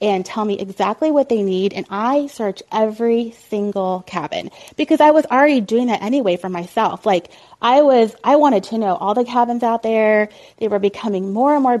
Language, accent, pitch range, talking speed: English, American, 195-260 Hz, 205 wpm